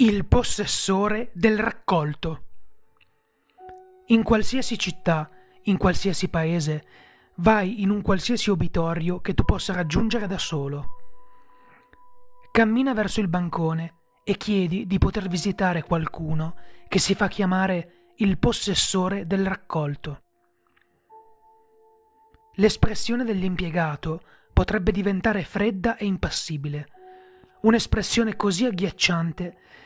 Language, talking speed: Italian, 100 wpm